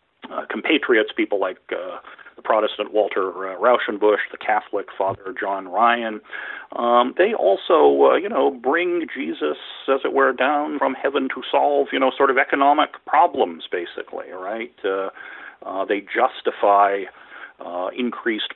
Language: English